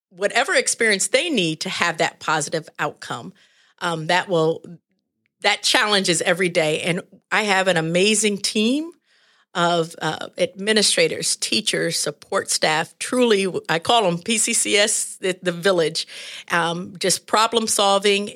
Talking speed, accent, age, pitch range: 130 wpm, American, 50-69, 170-220 Hz